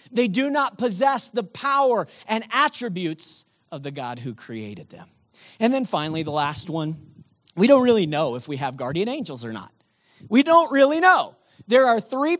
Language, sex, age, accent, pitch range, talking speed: English, male, 40-59, American, 185-250 Hz, 185 wpm